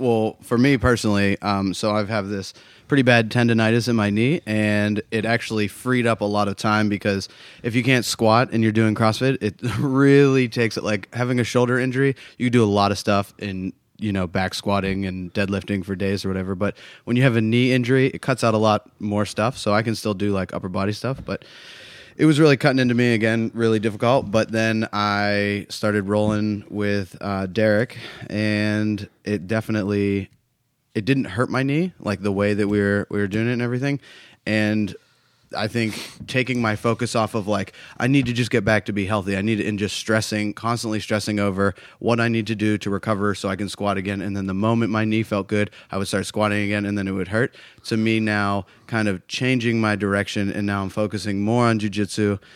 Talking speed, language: 220 wpm, English